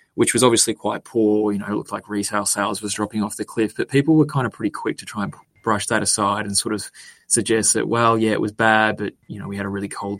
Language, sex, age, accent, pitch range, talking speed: English, male, 20-39, Australian, 100-110 Hz, 280 wpm